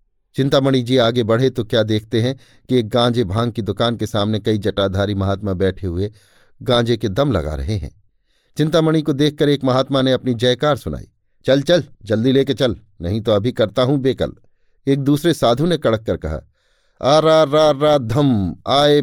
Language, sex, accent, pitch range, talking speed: Hindi, male, native, 105-135 Hz, 185 wpm